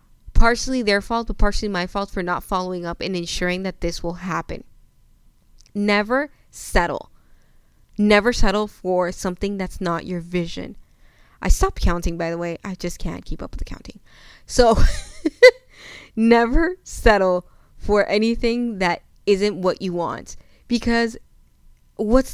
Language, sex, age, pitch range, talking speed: English, female, 20-39, 180-230 Hz, 140 wpm